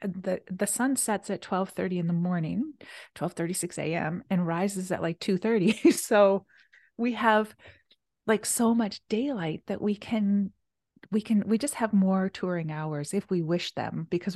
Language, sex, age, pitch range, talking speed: English, female, 30-49, 175-215 Hz, 175 wpm